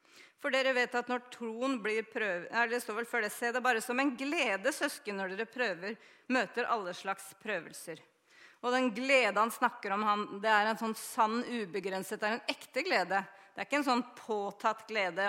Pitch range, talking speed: 195-250 Hz, 200 wpm